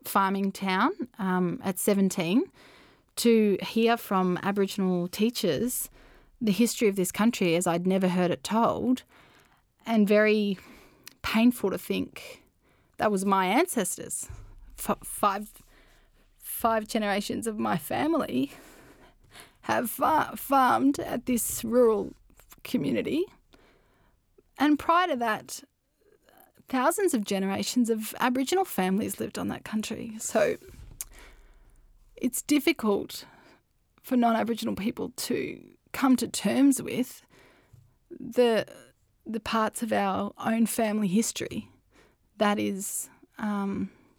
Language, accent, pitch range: English, Australian, 195-245 Hz